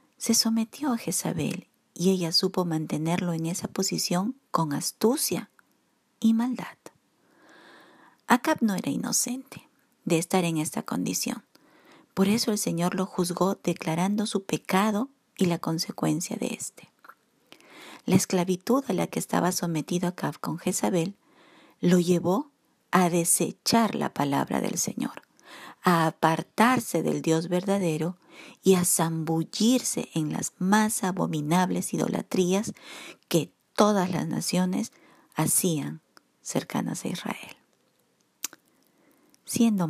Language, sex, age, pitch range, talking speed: Spanish, female, 50-69, 170-230 Hz, 115 wpm